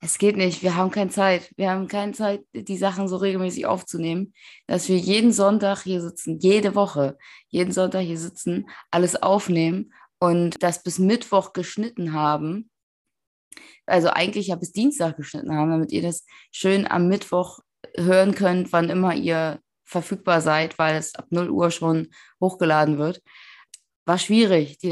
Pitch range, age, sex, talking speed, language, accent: 165-195 Hz, 20-39, female, 160 wpm, German, German